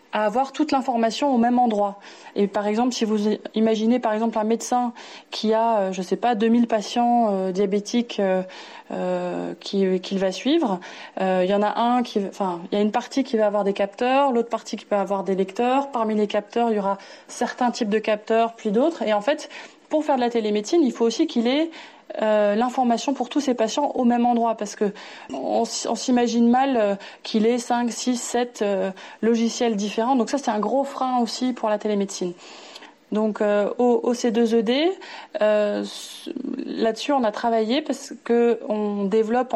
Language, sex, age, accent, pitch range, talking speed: French, female, 20-39, French, 210-250 Hz, 195 wpm